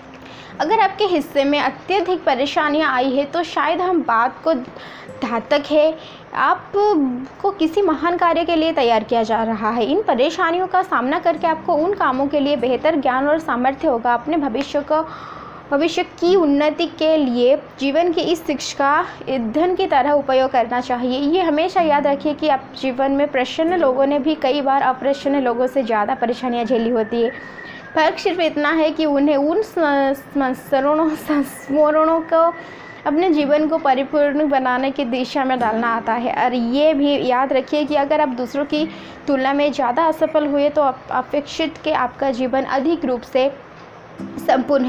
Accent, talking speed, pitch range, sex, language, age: native, 170 wpm, 255-310 Hz, female, Hindi, 20-39